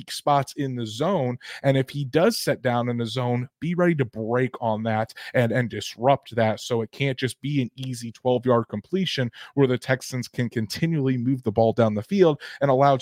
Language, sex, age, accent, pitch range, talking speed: English, male, 30-49, American, 120-145 Hz, 210 wpm